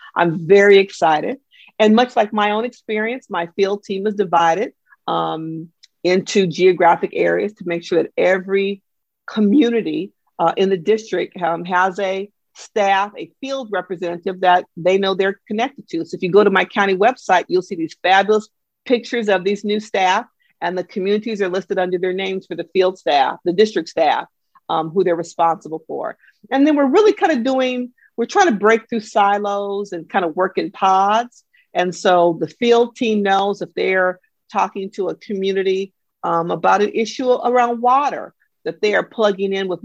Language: English